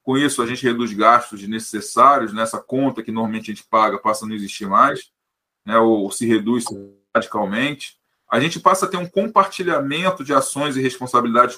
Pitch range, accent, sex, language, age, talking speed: 120-155 Hz, Brazilian, male, Portuguese, 20-39, 190 wpm